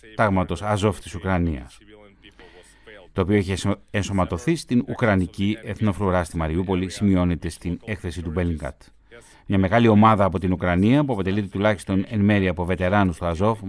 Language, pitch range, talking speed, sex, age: Greek, 95-115 Hz, 135 wpm, male, 30-49